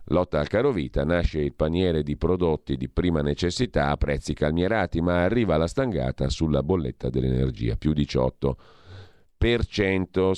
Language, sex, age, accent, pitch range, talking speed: Italian, male, 40-59, native, 75-95 Hz, 135 wpm